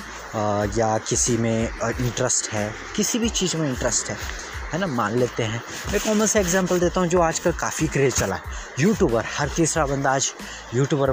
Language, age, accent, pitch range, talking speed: Hindi, 20-39, native, 115-150 Hz, 190 wpm